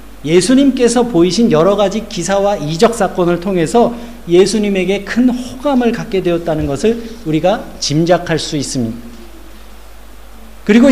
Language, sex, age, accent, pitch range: Korean, male, 50-69, native, 175-240 Hz